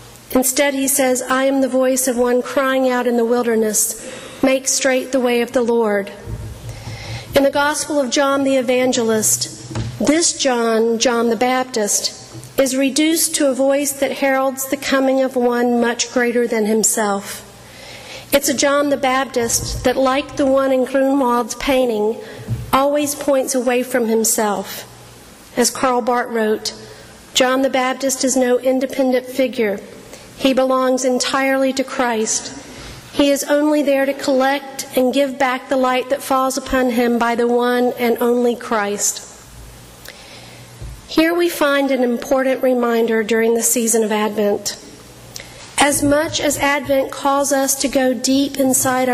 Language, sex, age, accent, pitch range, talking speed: English, female, 50-69, American, 235-275 Hz, 150 wpm